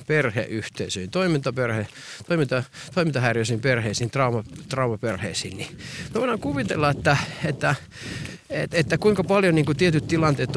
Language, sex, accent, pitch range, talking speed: Finnish, male, native, 125-165 Hz, 115 wpm